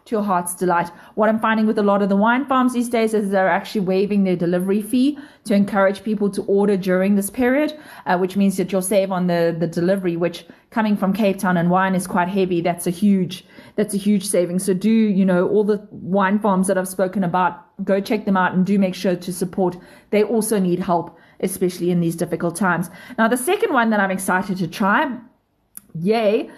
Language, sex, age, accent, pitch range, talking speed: English, female, 30-49, Australian, 190-230 Hz, 225 wpm